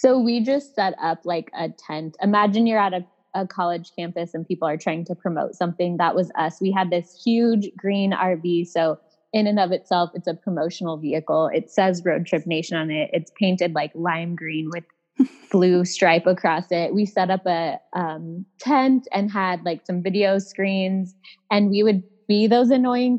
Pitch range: 175-240 Hz